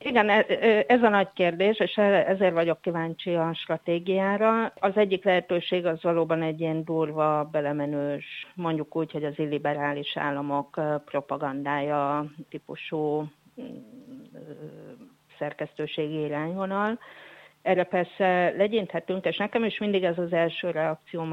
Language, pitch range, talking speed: Hungarian, 145-175 Hz, 115 wpm